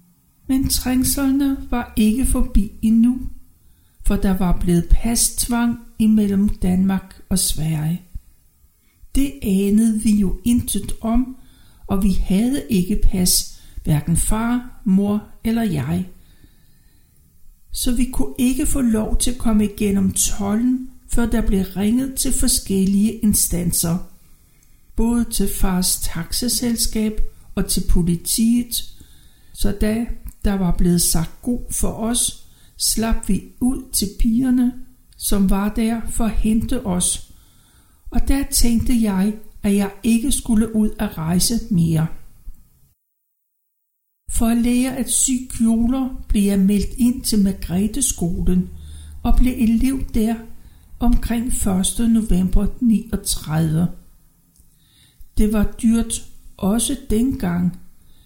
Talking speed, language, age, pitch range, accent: 115 wpm, Danish, 60-79, 190-240 Hz, native